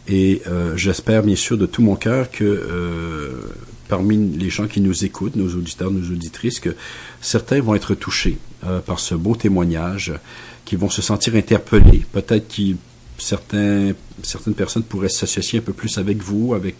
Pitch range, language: 85-105 Hz, English